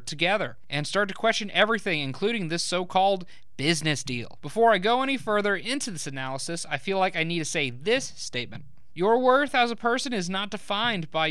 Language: English